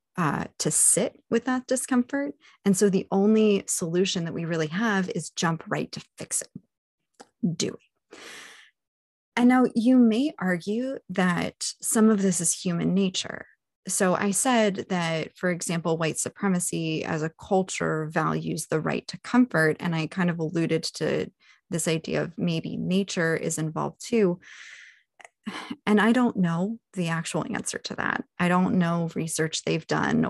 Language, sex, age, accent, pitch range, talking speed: English, female, 20-39, American, 160-200 Hz, 155 wpm